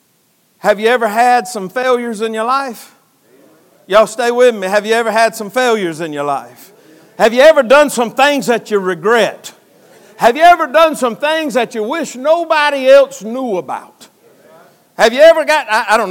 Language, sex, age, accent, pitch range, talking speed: English, male, 60-79, American, 215-260 Hz, 190 wpm